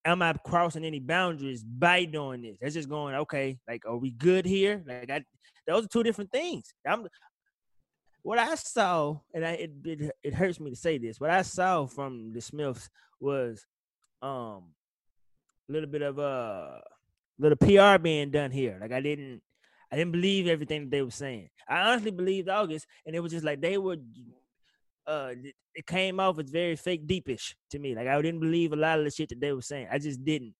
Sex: male